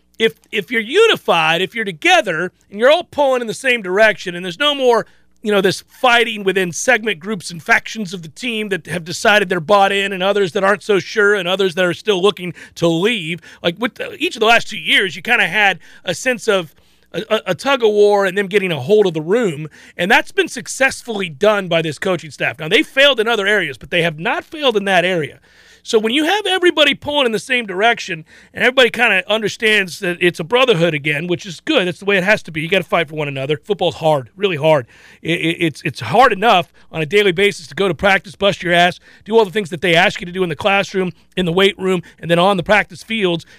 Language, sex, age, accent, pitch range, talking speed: English, male, 40-59, American, 175-230 Hz, 250 wpm